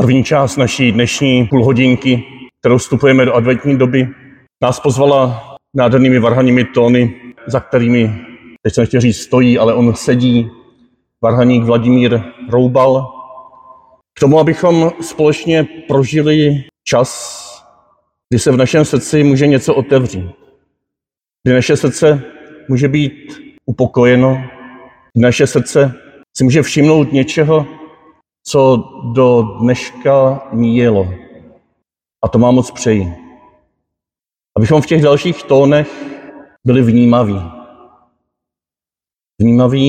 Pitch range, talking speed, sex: 120-145 Hz, 105 wpm, male